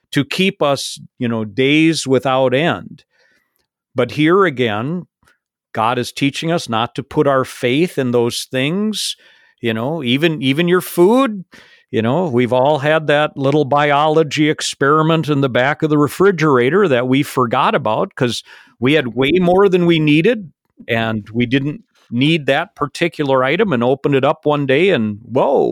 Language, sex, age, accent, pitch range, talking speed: English, male, 50-69, American, 130-175 Hz, 165 wpm